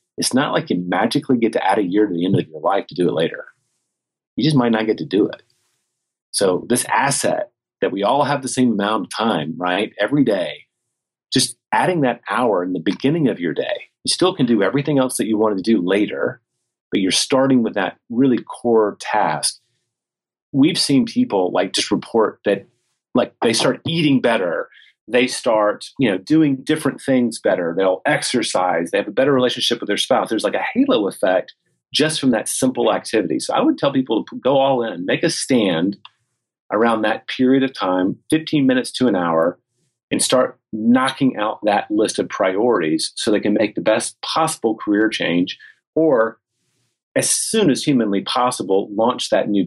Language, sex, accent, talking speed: English, male, American, 195 wpm